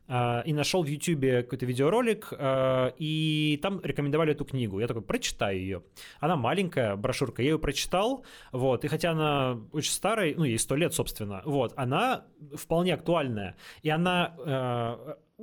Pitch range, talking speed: 125-155 Hz, 150 wpm